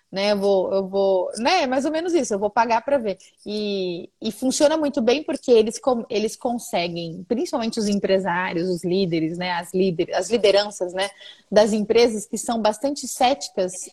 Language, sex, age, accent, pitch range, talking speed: Portuguese, female, 20-39, Brazilian, 200-280 Hz, 180 wpm